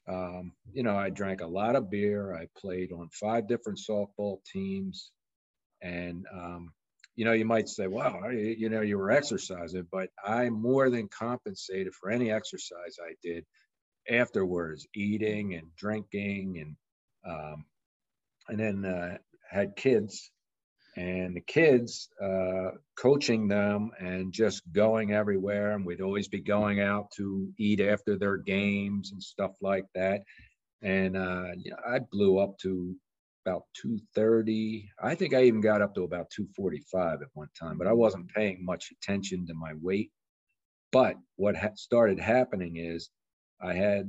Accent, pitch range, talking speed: American, 90-110 Hz, 150 wpm